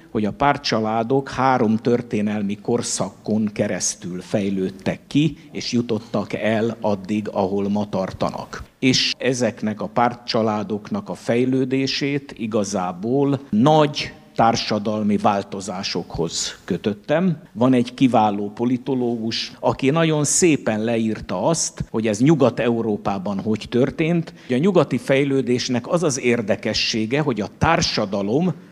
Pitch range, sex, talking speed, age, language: 110-135 Hz, male, 105 wpm, 60-79, Hungarian